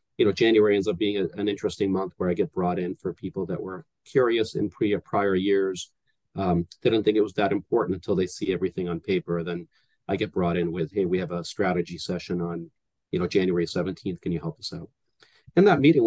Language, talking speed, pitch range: English, 235 wpm, 95-125 Hz